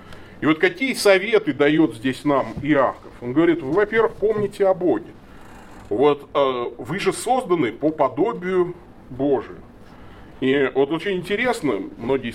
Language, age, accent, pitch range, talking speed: Russian, 30-49, native, 115-155 Hz, 135 wpm